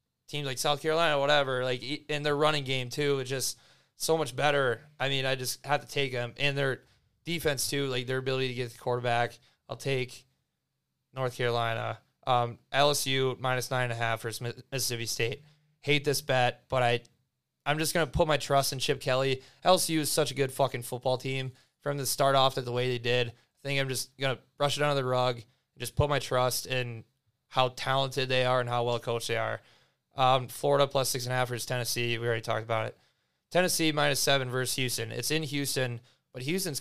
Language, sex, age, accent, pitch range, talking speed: English, male, 20-39, American, 125-145 Hz, 210 wpm